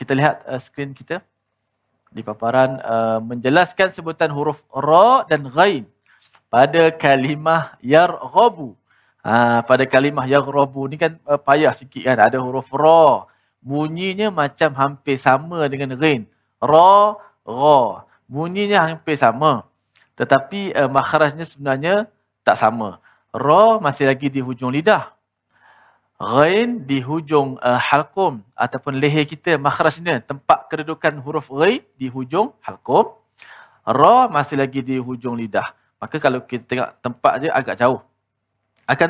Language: Malayalam